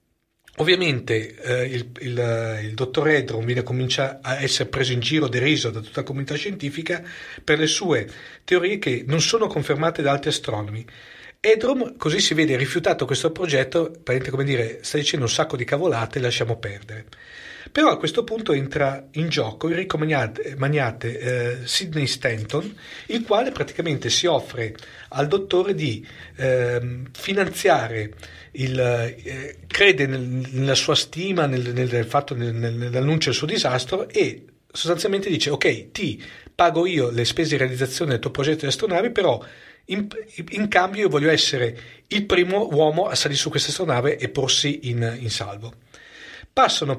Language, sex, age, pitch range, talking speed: Italian, male, 50-69, 120-165 Hz, 160 wpm